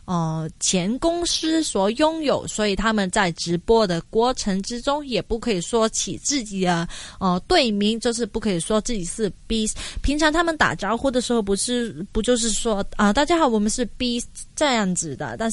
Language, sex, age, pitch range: Chinese, female, 20-39, 190-250 Hz